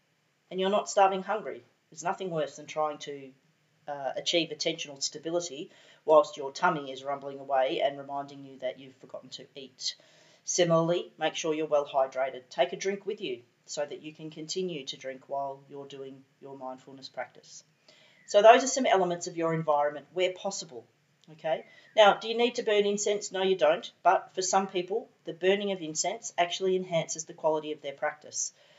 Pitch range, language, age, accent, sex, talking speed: 140-185 Hz, English, 40-59, Australian, female, 185 wpm